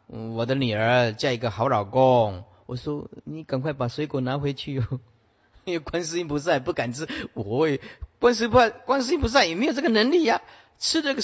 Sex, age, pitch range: male, 40-59, 110-180 Hz